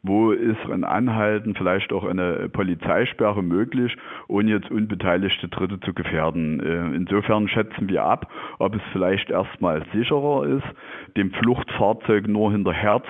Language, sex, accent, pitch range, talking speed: German, male, German, 100-120 Hz, 135 wpm